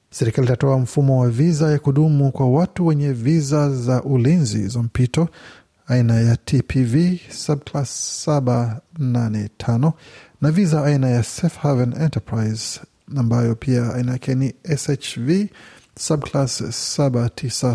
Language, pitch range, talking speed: Swahili, 120-150 Hz, 110 wpm